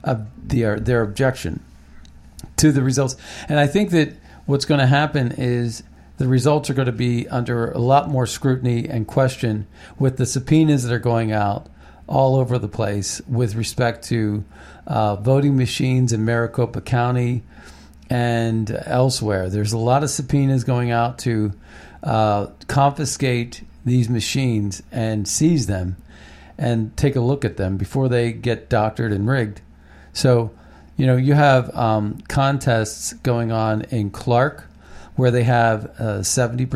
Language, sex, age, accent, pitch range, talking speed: English, male, 50-69, American, 105-130 Hz, 155 wpm